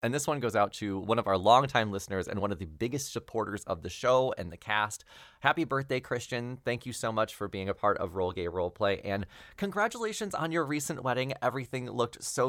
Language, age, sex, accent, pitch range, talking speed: English, 20-39, male, American, 105-145 Hz, 225 wpm